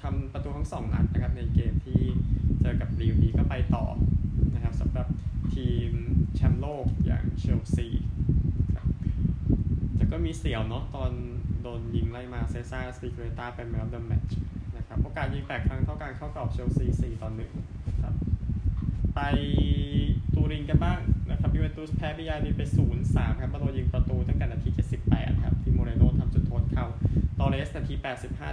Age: 20-39